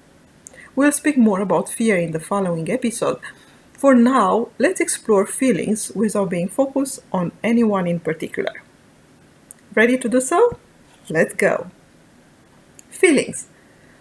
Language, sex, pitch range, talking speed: English, female, 200-275 Hz, 120 wpm